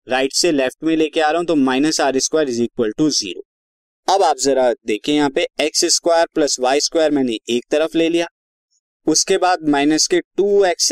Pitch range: 130-180 Hz